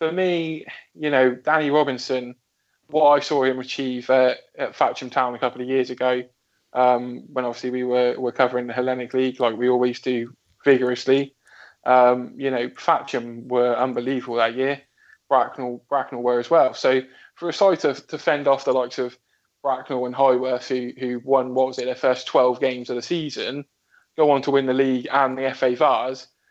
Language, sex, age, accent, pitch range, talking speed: English, male, 20-39, British, 125-140 Hz, 190 wpm